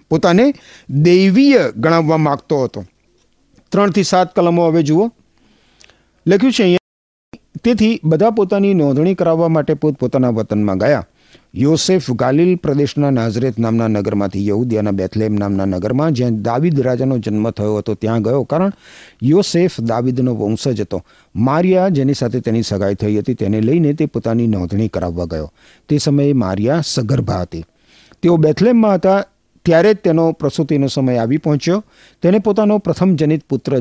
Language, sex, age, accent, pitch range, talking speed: Gujarati, male, 50-69, native, 110-170 Hz, 90 wpm